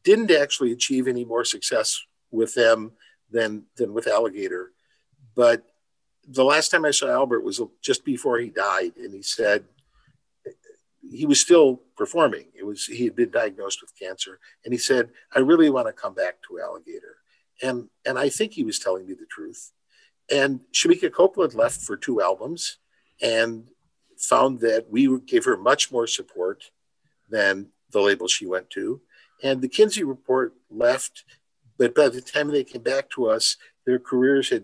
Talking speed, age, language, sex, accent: 170 wpm, 50-69, Dutch, male, American